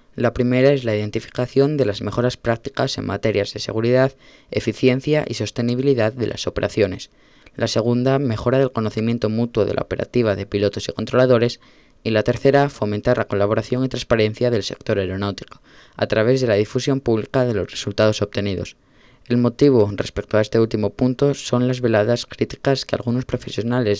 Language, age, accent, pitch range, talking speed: Spanish, 20-39, Spanish, 105-130 Hz, 170 wpm